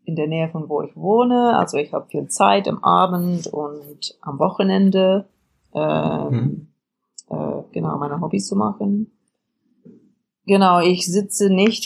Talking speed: 140 wpm